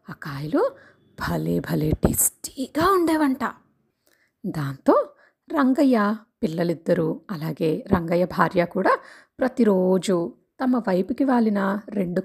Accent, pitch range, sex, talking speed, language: native, 185-265 Hz, female, 90 wpm, Telugu